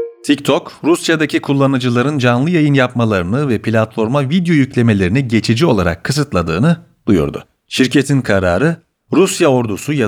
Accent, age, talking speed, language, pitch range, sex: native, 40-59, 115 wpm, Turkish, 105-150 Hz, male